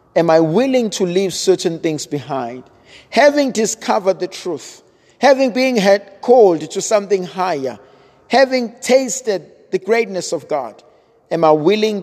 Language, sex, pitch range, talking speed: English, male, 175-230 Hz, 135 wpm